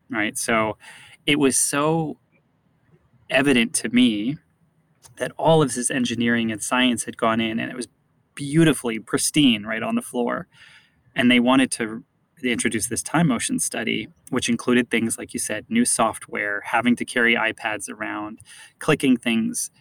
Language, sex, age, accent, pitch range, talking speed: English, male, 20-39, American, 115-150 Hz, 155 wpm